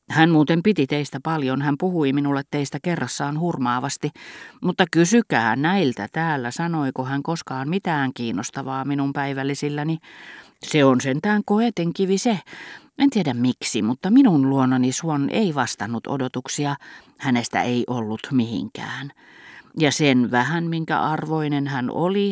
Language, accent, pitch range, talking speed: Finnish, native, 125-160 Hz, 130 wpm